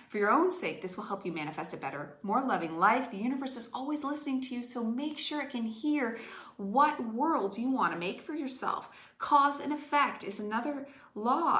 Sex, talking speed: female, 210 wpm